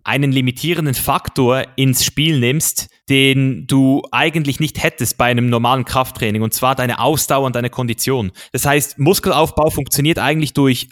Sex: male